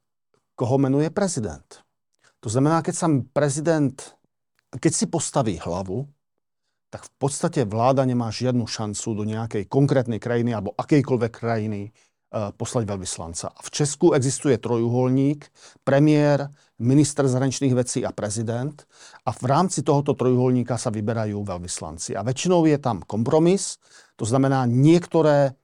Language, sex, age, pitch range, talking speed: Slovak, male, 50-69, 115-145 Hz, 125 wpm